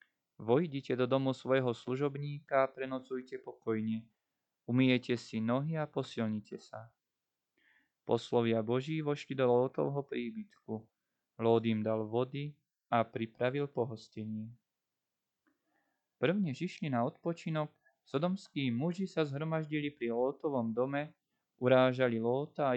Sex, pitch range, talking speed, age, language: male, 115-145 Hz, 110 wpm, 20-39, Slovak